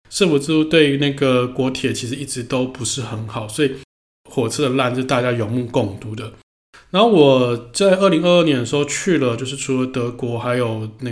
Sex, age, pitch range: male, 20-39, 120-140 Hz